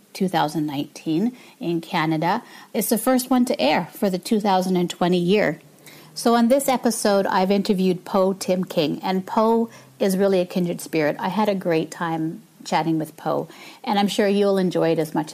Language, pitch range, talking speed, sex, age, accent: English, 185-235 Hz, 175 wpm, female, 40-59, American